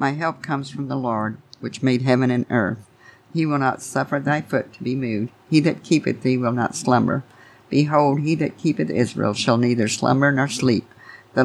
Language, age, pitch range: English, 50-69, 115-135 Hz